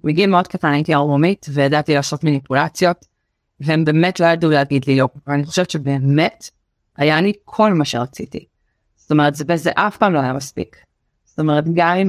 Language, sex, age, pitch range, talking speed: Hebrew, female, 30-49, 145-170 Hz, 180 wpm